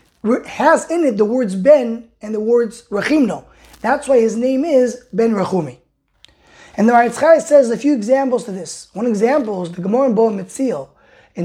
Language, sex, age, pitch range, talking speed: English, male, 20-39, 200-270 Hz, 180 wpm